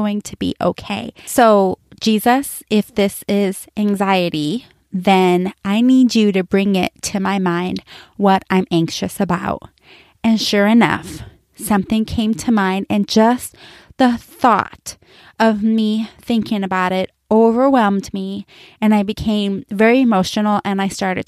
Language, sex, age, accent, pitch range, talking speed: English, female, 20-39, American, 200-245 Hz, 140 wpm